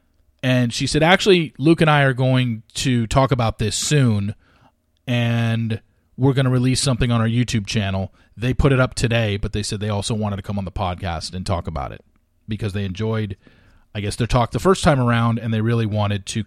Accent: American